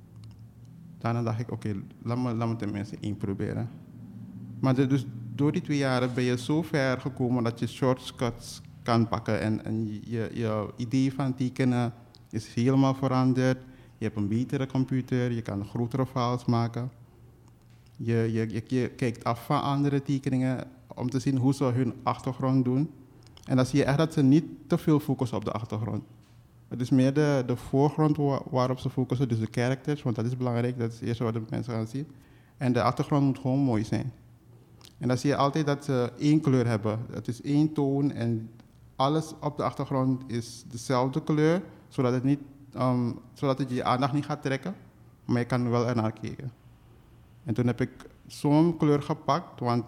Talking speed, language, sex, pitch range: 185 wpm, Dutch, male, 115-135 Hz